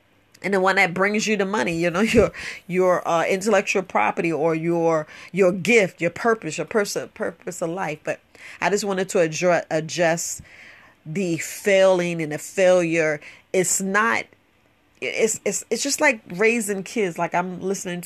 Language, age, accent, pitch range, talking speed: English, 40-59, American, 170-200 Hz, 165 wpm